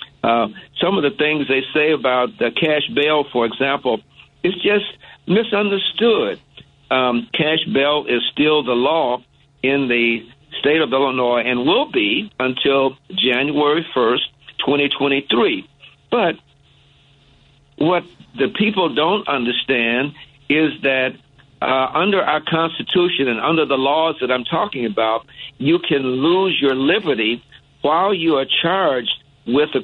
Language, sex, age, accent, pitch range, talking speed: English, male, 60-79, American, 130-165 Hz, 135 wpm